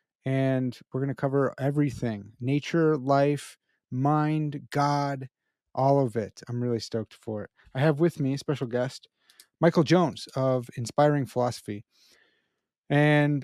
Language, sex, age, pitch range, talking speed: English, male, 30-49, 125-155 Hz, 140 wpm